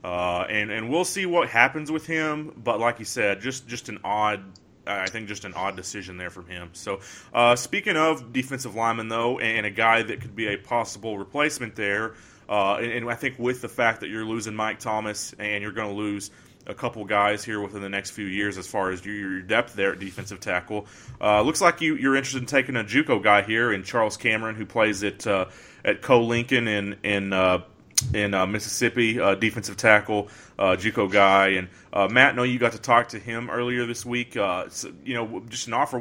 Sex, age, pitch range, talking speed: male, 30-49, 100-120 Hz, 225 wpm